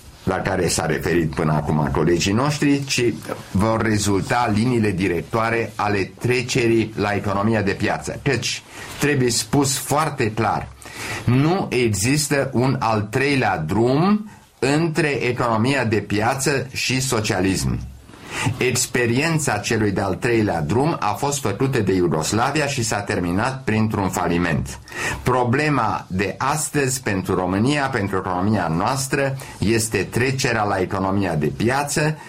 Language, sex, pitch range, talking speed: Romanian, male, 95-130 Hz, 120 wpm